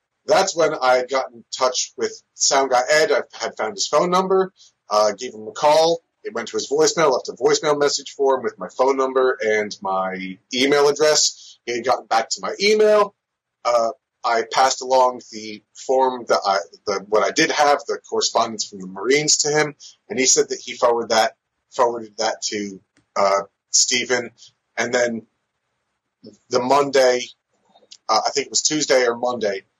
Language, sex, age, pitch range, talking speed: English, male, 30-49, 110-150 Hz, 185 wpm